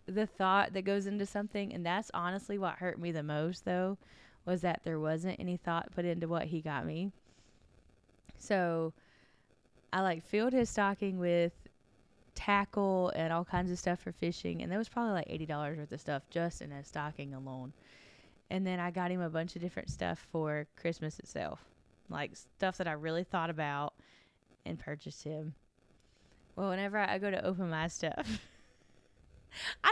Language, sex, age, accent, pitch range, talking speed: English, female, 20-39, American, 160-215 Hz, 180 wpm